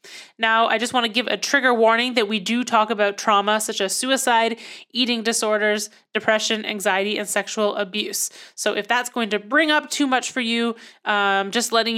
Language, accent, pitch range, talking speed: English, American, 205-240 Hz, 195 wpm